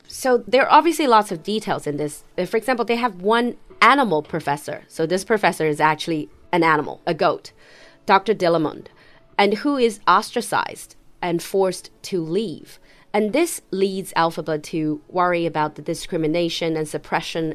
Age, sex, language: 30-49, female, Chinese